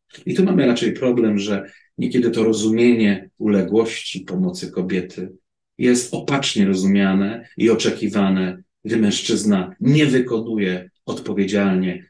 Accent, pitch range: native, 100-145 Hz